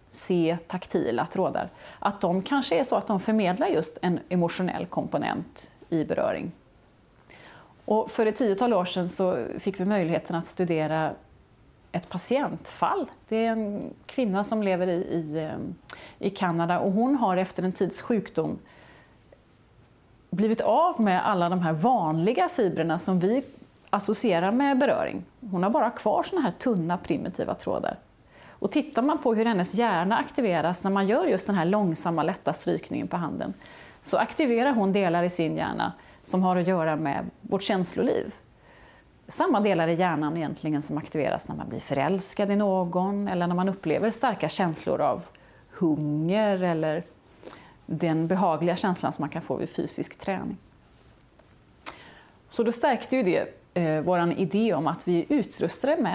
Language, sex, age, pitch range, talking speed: English, female, 30-49, 170-220 Hz, 155 wpm